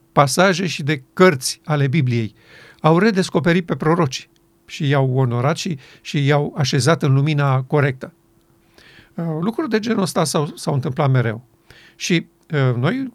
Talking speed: 135 wpm